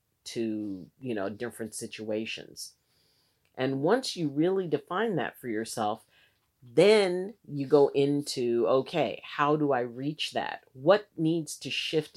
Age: 40-59